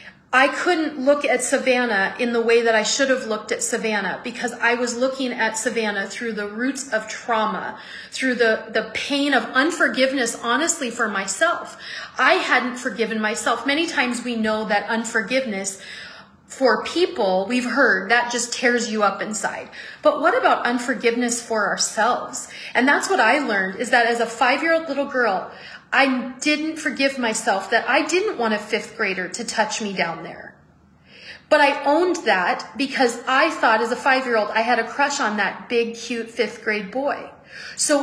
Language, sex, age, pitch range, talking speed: English, female, 30-49, 220-270 Hz, 175 wpm